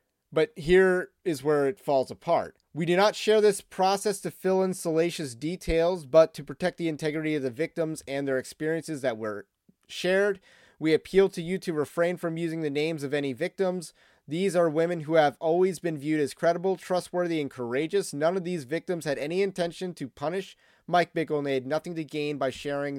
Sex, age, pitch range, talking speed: male, 30-49, 140-175 Hz, 200 wpm